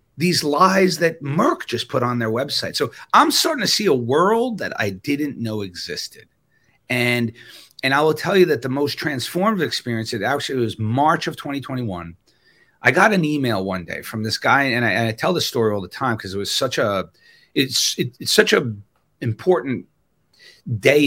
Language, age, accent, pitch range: English, 40-59, American, 110-155 Hz